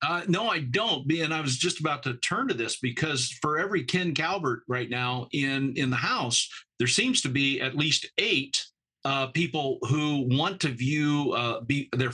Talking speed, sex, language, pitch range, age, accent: 195 wpm, male, English, 125-155 Hz, 50-69, American